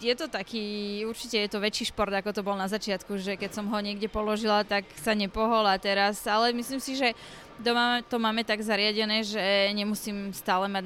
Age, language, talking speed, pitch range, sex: 20-39, Slovak, 200 wpm, 195-215 Hz, female